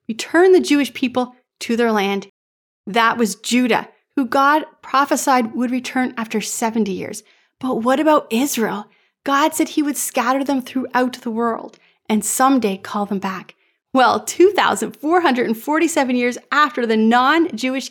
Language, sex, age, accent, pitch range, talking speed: English, female, 30-49, American, 220-270 Hz, 140 wpm